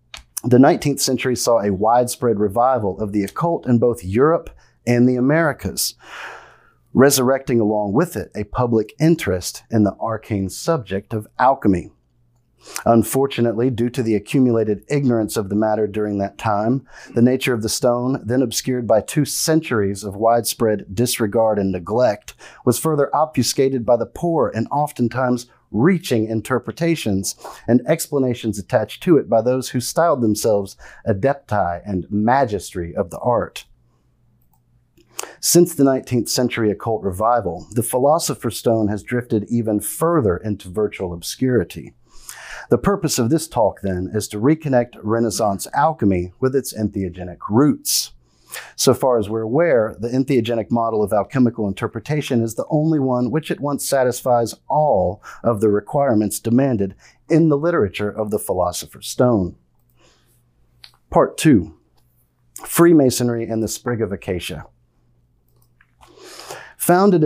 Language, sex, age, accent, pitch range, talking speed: English, male, 40-59, American, 100-130 Hz, 135 wpm